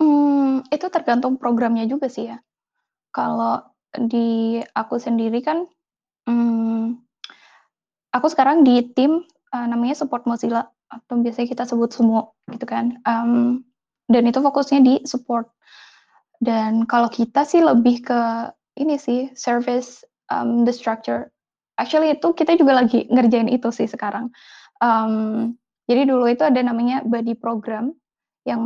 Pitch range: 230-260 Hz